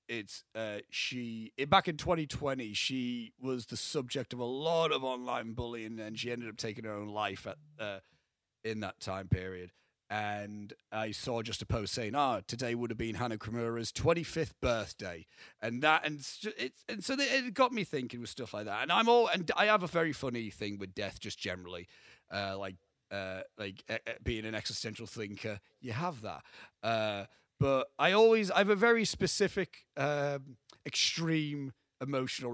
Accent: British